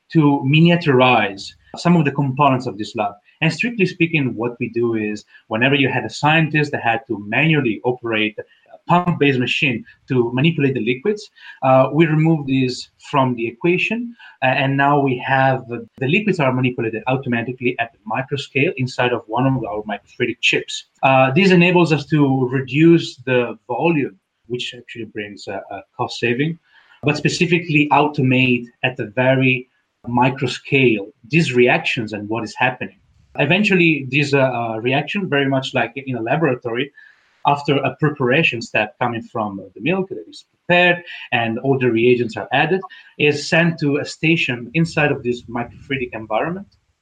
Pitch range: 120-150 Hz